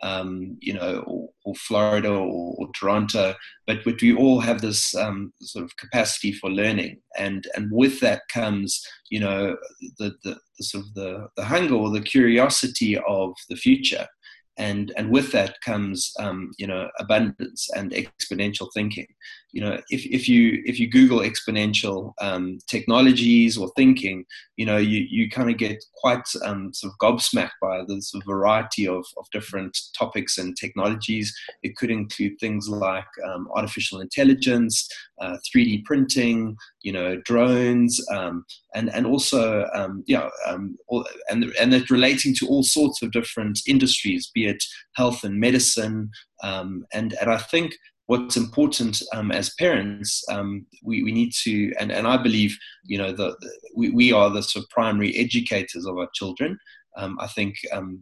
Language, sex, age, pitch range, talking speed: English, male, 20-39, 100-130 Hz, 170 wpm